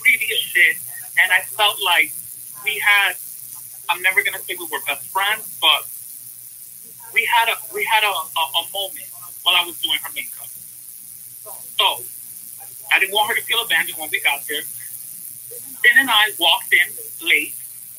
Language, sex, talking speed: English, male, 165 wpm